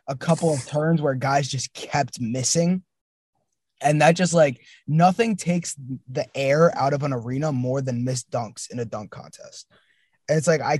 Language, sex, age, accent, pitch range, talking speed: English, male, 20-39, American, 130-160 Hz, 185 wpm